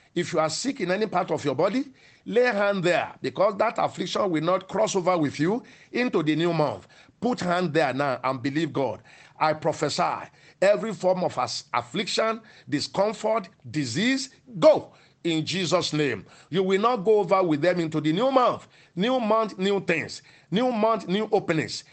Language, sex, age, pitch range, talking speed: English, male, 50-69, 155-215 Hz, 175 wpm